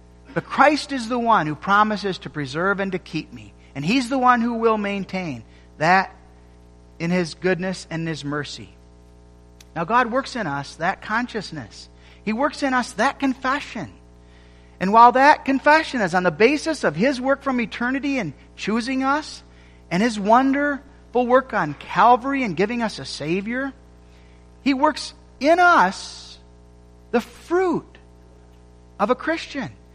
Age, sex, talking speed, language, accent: 50-69, male, 150 wpm, English, American